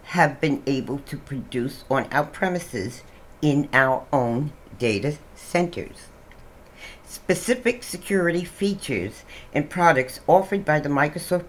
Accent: American